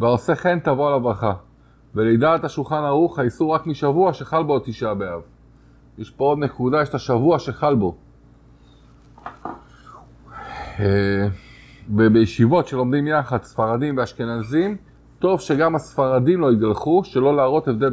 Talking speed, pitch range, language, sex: 135 wpm, 115-145 Hz, Hebrew, male